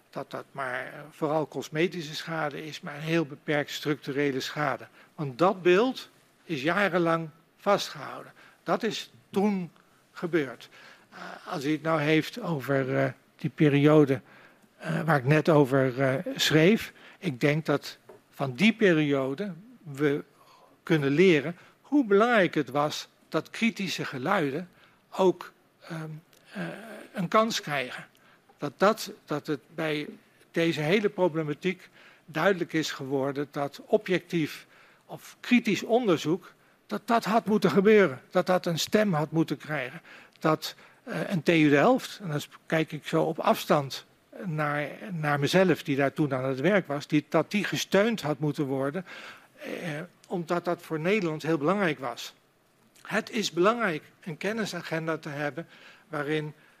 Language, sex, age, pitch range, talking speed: Dutch, male, 60-79, 150-195 Hz, 135 wpm